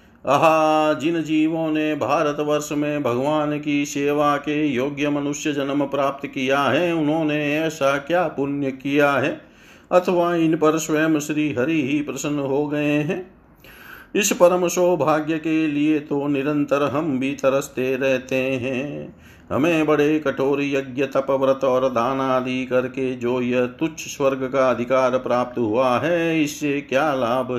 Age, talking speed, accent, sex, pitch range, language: 50-69, 145 wpm, native, male, 135-155 Hz, Hindi